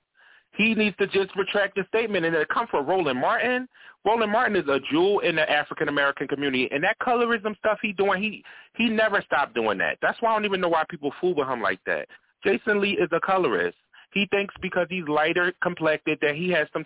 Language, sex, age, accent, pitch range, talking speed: English, male, 30-49, American, 155-210 Hz, 220 wpm